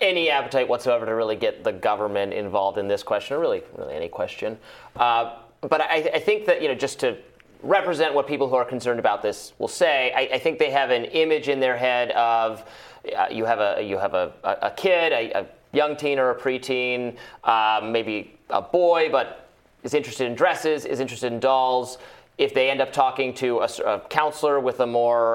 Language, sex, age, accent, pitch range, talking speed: English, male, 30-49, American, 120-165 Hz, 210 wpm